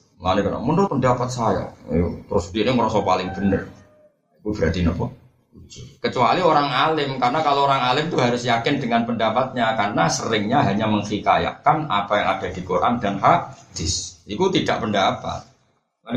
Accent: native